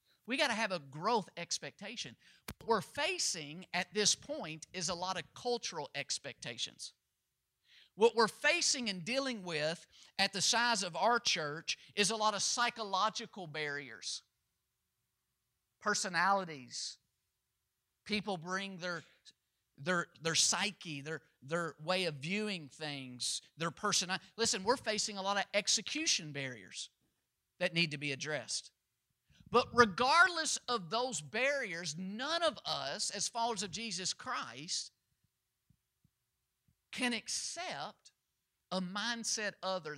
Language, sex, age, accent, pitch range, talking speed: English, male, 50-69, American, 150-210 Hz, 125 wpm